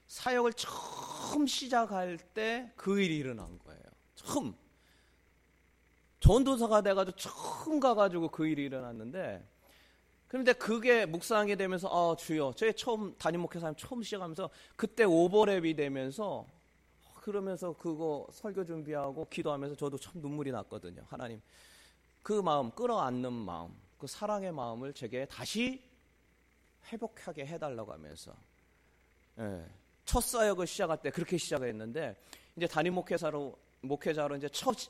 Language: Korean